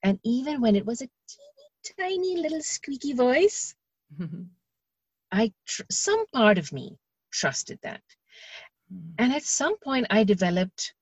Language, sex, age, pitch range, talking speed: English, female, 50-69, 175-220 Hz, 135 wpm